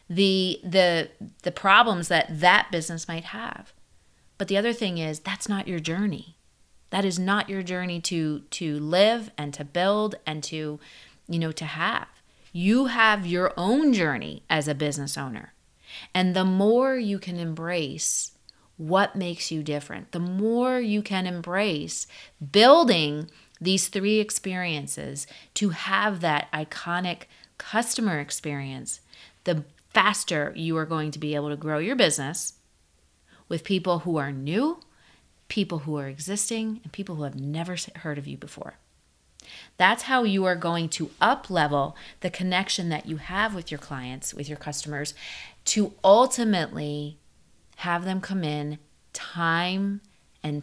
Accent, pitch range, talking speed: American, 150-195 Hz, 150 wpm